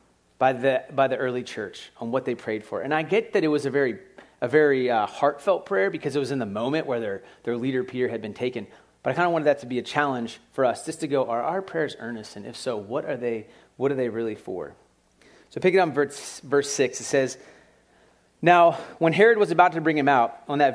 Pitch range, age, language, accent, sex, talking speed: 120-165 Hz, 30-49, English, American, male, 255 wpm